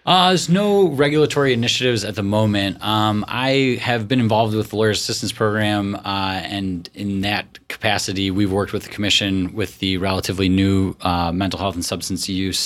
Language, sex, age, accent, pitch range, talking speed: English, male, 30-49, American, 90-105 Hz, 180 wpm